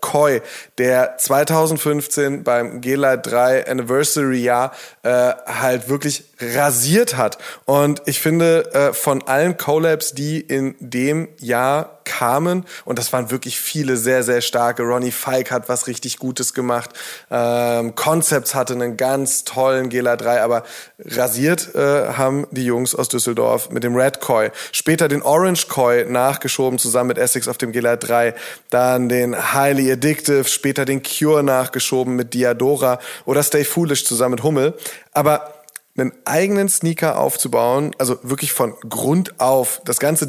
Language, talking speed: German, 145 wpm